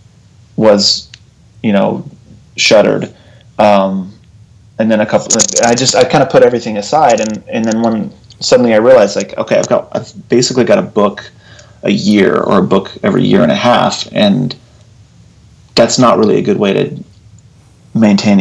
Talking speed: 170 wpm